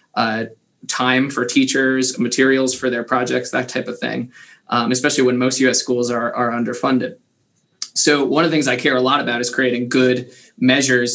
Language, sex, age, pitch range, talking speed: English, male, 20-39, 125-150 Hz, 190 wpm